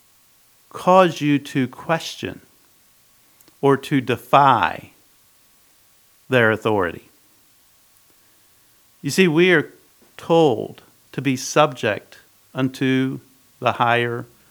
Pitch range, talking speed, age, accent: 120-155 Hz, 85 wpm, 50-69, American